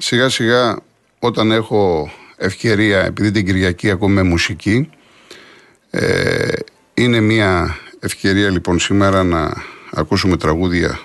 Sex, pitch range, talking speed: male, 85-115 Hz, 105 wpm